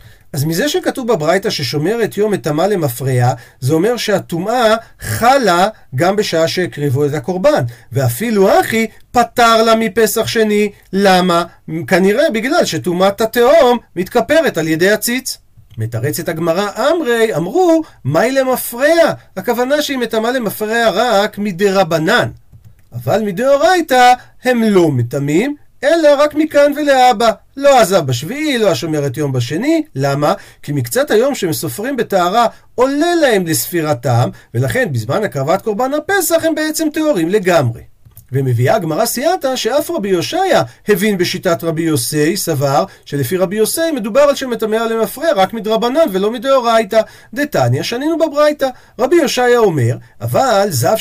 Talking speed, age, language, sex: 130 wpm, 40-59, Hebrew, male